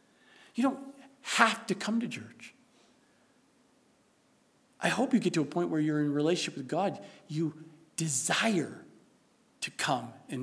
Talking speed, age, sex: 145 wpm, 50-69, male